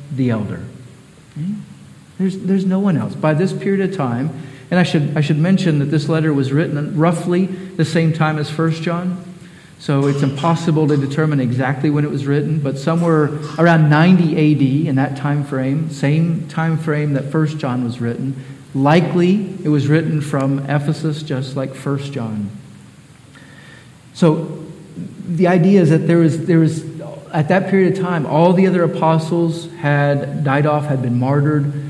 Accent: American